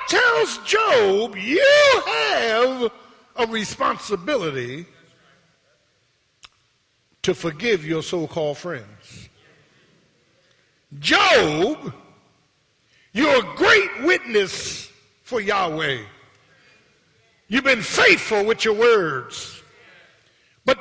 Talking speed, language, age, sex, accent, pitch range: 70 wpm, English, 50-69, male, American, 155-245 Hz